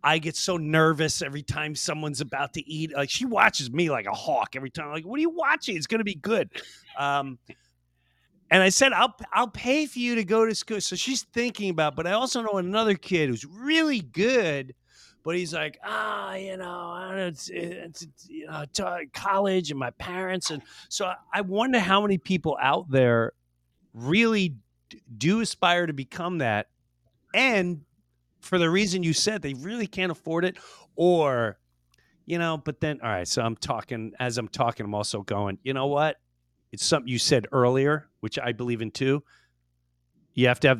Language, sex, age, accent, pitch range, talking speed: English, male, 40-59, American, 120-185 Hz, 195 wpm